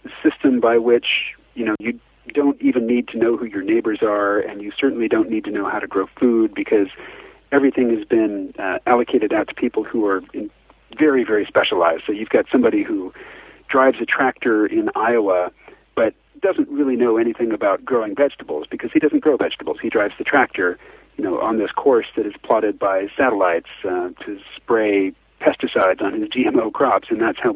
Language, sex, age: English, male, 40-59